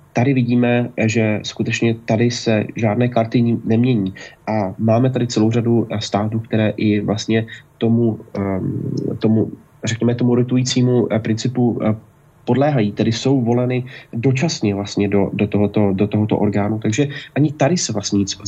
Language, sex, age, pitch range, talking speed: Slovak, male, 30-49, 110-125 Hz, 135 wpm